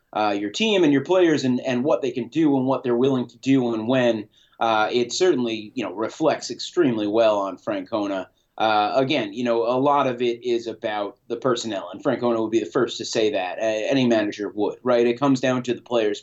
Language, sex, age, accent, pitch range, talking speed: English, male, 30-49, American, 115-135 Hz, 230 wpm